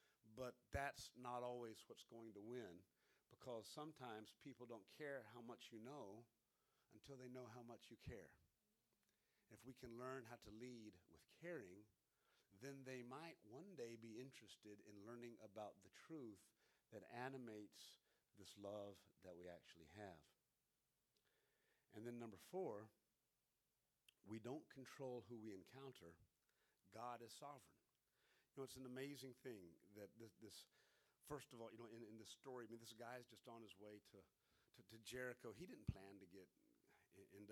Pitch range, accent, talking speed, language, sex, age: 105-135 Hz, American, 165 wpm, English, male, 50-69